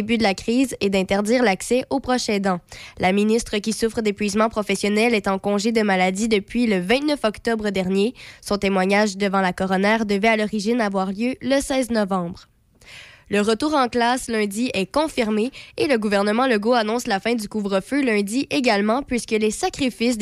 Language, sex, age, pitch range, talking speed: French, female, 20-39, 200-235 Hz, 180 wpm